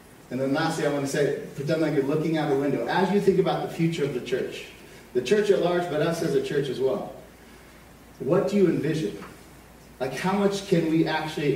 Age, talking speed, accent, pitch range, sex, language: 30-49, 230 wpm, American, 140-185 Hz, male, English